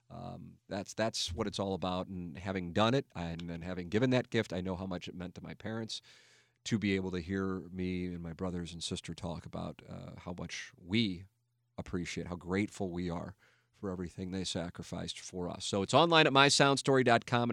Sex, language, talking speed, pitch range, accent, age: male, English, 200 wpm, 95-125 Hz, American, 40-59